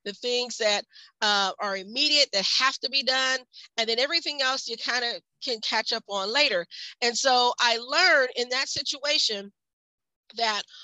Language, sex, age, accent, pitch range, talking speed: English, female, 40-59, American, 205-270 Hz, 170 wpm